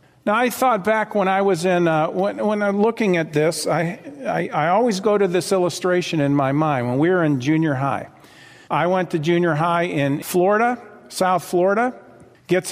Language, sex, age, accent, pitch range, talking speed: English, male, 50-69, American, 145-190 Hz, 200 wpm